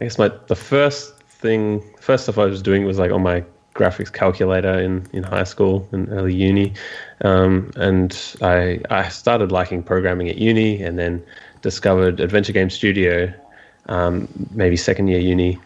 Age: 20-39